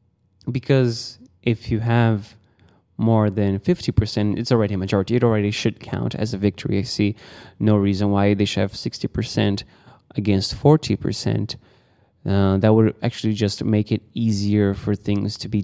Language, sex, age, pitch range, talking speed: English, male, 20-39, 100-125 Hz, 155 wpm